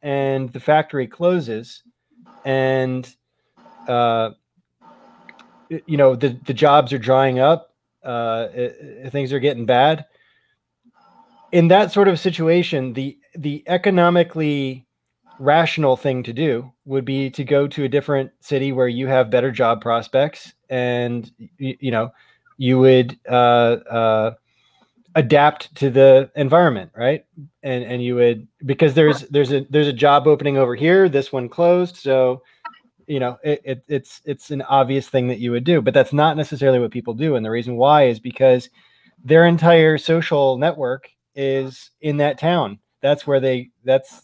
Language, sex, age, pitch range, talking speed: English, male, 20-39, 125-155 Hz, 155 wpm